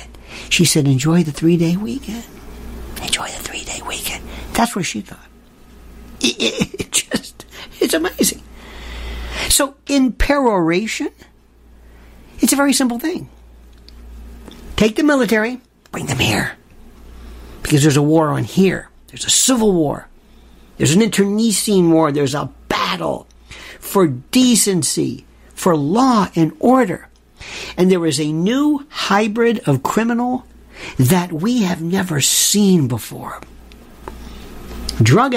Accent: American